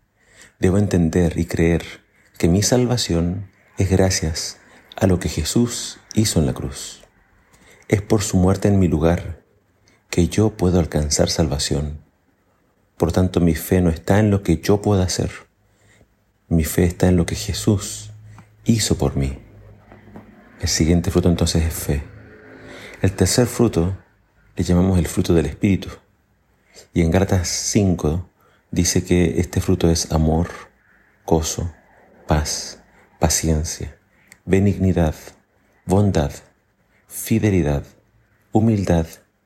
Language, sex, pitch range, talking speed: Spanish, male, 85-100 Hz, 125 wpm